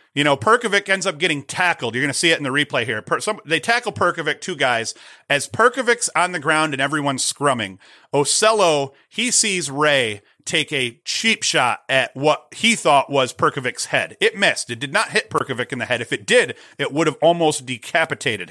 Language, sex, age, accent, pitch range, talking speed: English, male, 40-59, American, 135-180 Hz, 210 wpm